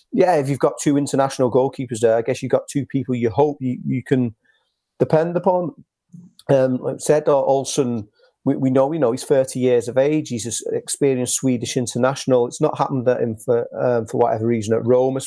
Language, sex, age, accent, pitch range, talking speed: English, male, 40-59, British, 125-140 Hz, 210 wpm